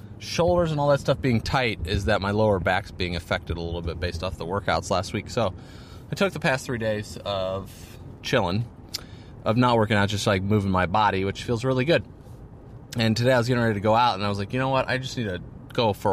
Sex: male